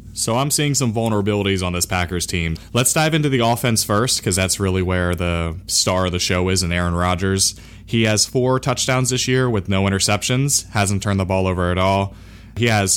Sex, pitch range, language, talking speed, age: male, 90-110 Hz, English, 215 wpm, 20-39